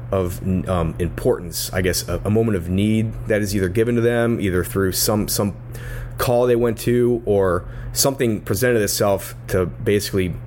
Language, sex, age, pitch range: English, male, 30-49, 90-120 Hz